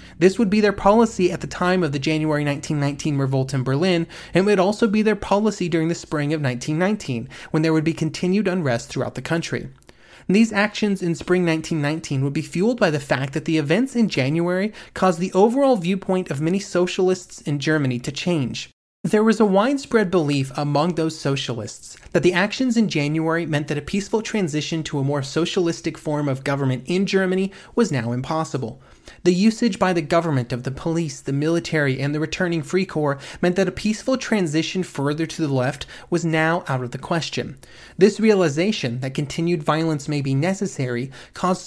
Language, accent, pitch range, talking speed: English, American, 145-190 Hz, 190 wpm